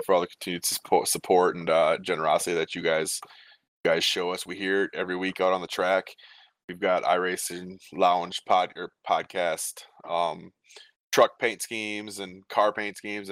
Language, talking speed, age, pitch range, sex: English, 175 wpm, 20-39, 95-105 Hz, male